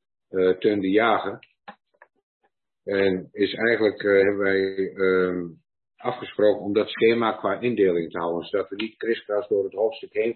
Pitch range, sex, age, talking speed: 95-115 Hz, male, 50-69, 155 wpm